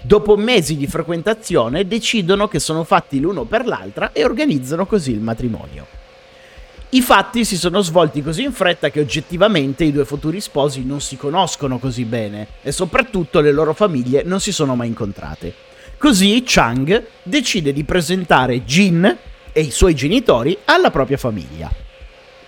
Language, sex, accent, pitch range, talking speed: Italian, male, native, 130-205 Hz, 155 wpm